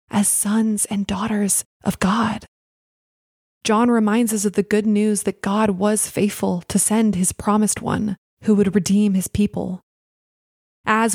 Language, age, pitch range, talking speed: English, 20-39, 190-225 Hz, 150 wpm